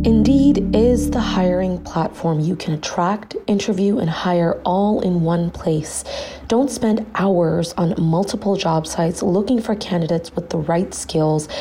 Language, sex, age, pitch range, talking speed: English, female, 30-49, 175-220 Hz, 150 wpm